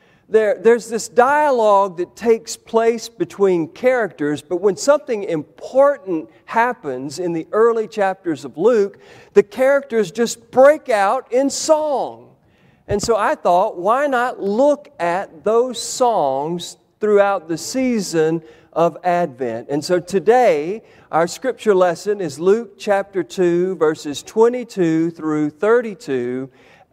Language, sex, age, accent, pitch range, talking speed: English, male, 40-59, American, 170-255 Hz, 125 wpm